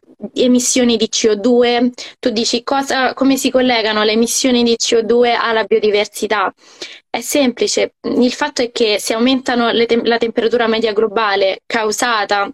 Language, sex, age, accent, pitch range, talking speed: Italian, female, 20-39, native, 220-260 Hz, 130 wpm